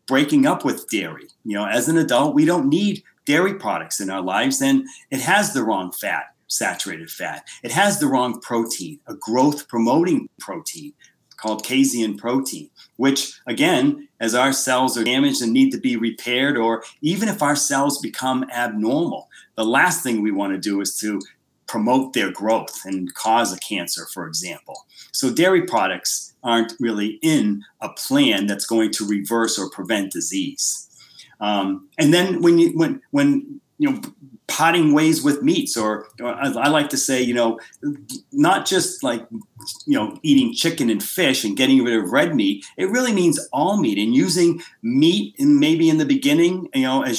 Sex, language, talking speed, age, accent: male, English, 180 wpm, 40-59, American